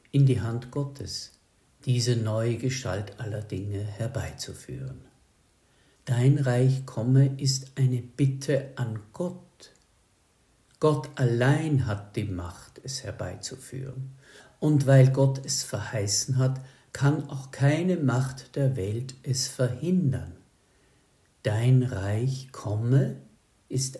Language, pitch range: German, 115-140 Hz